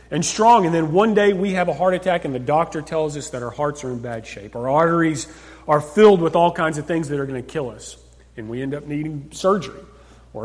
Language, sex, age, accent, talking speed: English, male, 40-59, American, 260 wpm